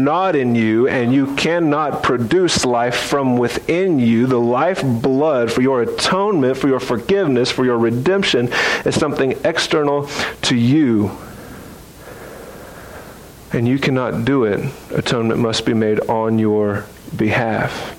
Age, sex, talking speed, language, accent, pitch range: 40-59, male, 130 wpm, English, American, 115-130 Hz